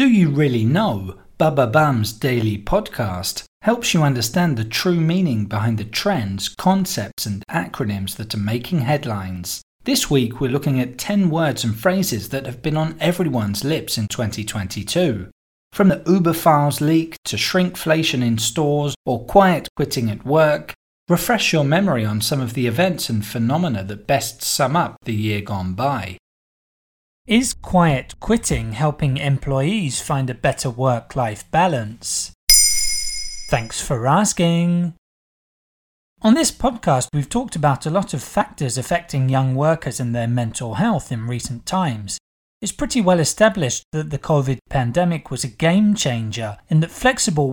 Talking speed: 150 wpm